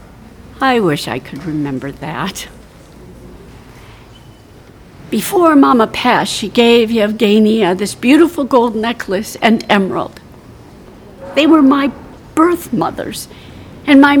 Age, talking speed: 50-69, 105 wpm